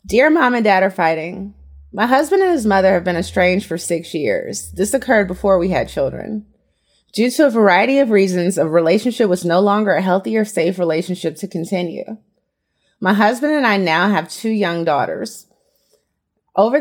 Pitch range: 175-220 Hz